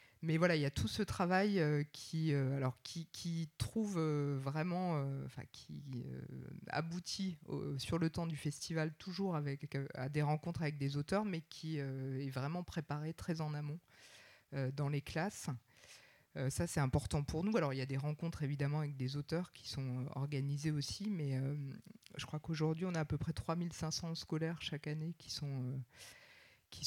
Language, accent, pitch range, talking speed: French, French, 140-175 Hz, 195 wpm